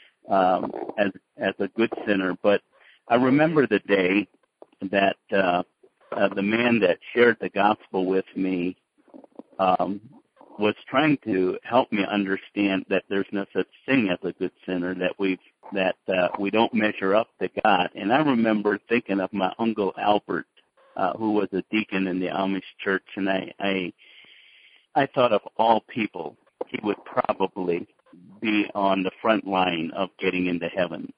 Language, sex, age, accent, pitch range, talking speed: English, male, 60-79, American, 95-105 Hz, 165 wpm